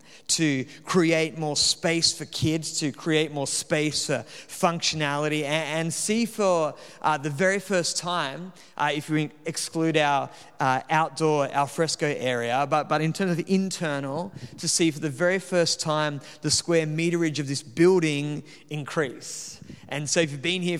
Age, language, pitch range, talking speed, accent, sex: 30-49, English, 145-165 Hz, 165 wpm, Australian, male